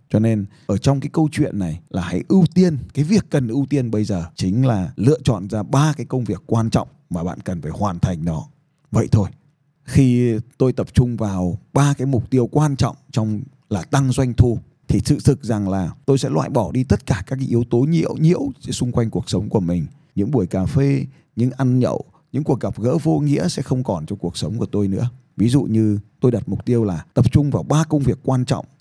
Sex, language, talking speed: male, Vietnamese, 240 wpm